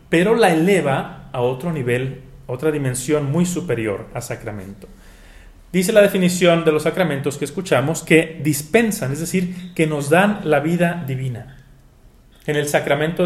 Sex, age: male, 40-59